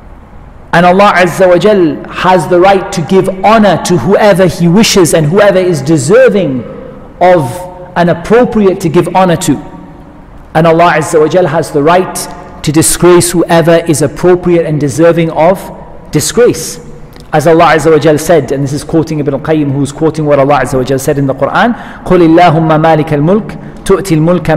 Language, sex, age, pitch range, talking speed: English, male, 40-59, 150-180 Hz, 165 wpm